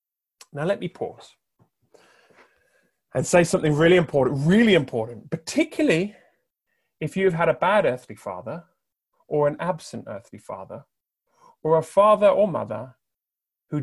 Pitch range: 135-200 Hz